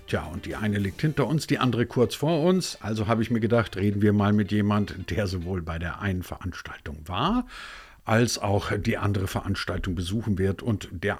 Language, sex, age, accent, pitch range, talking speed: German, male, 50-69, German, 90-115 Hz, 205 wpm